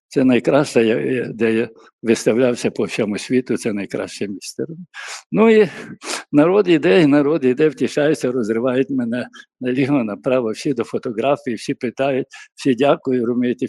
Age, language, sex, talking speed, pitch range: 60-79, Ukrainian, male, 130 wpm, 120-150 Hz